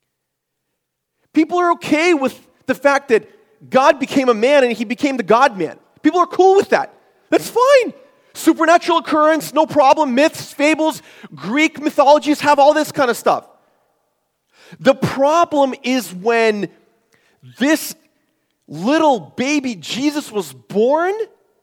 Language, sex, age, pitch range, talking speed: English, male, 40-59, 225-300 Hz, 135 wpm